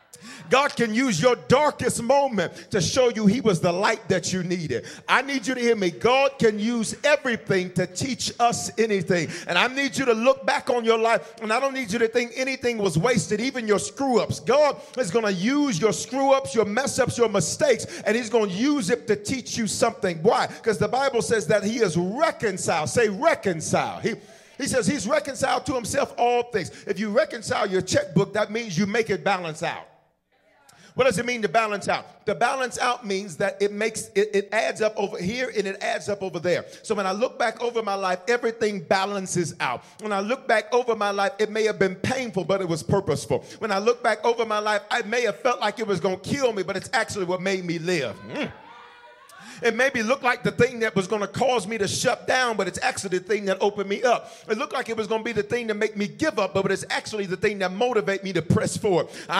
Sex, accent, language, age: male, American, English, 40-59